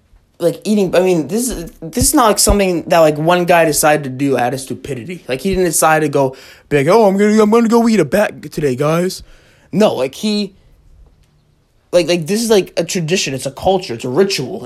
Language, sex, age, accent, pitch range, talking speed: English, male, 20-39, American, 145-185 Hz, 230 wpm